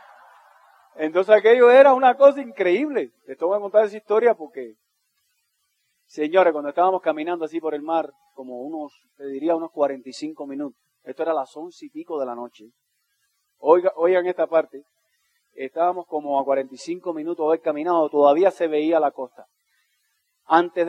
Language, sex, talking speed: Spanish, male, 160 wpm